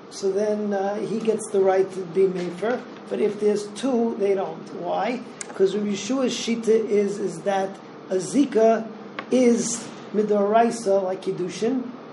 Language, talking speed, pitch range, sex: English, 145 wpm, 195-230 Hz, male